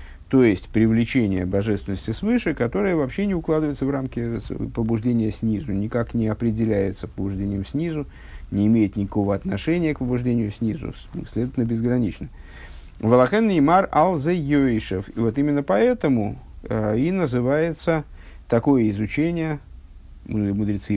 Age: 50-69